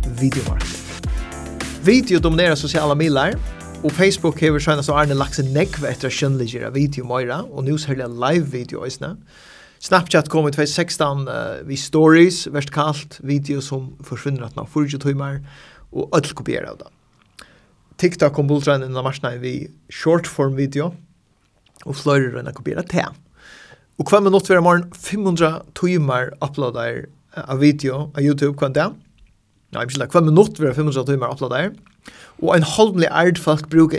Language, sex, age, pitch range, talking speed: English, male, 30-49, 135-160 Hz, 135 wpm